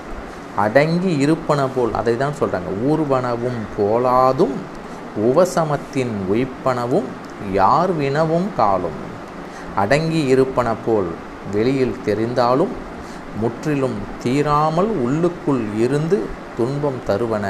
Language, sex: Tamil, male